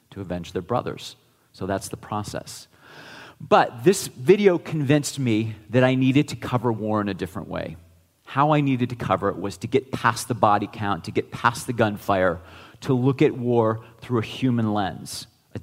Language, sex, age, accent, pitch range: Chinese, male, 40-59, American, 110-140 Hz